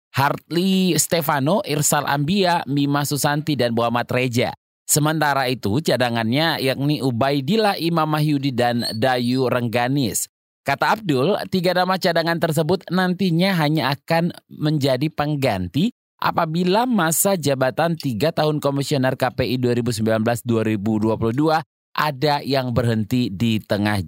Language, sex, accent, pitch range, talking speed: Indonesian, male, native, 115-155 Hz, 105 wpm